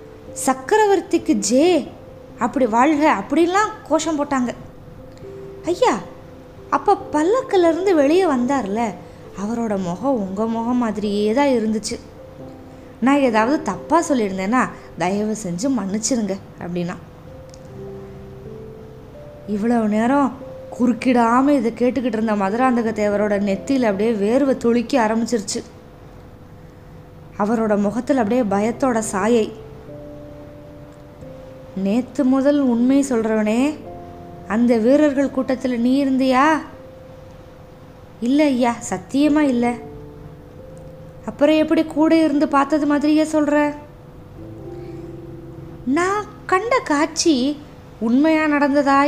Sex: female